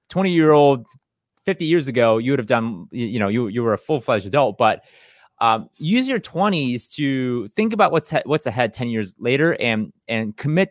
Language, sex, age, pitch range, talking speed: English, male, 30-49, 115-155 Hz, 190 wpm